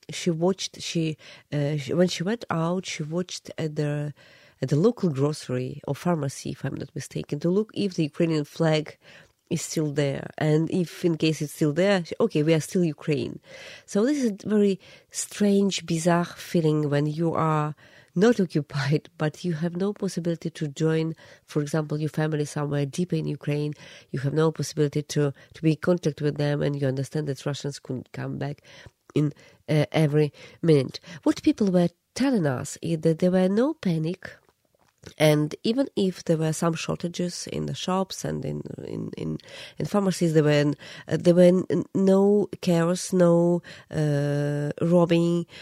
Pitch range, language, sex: 150-180 Hz, English, female